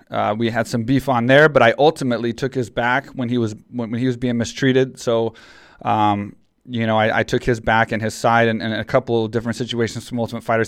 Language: English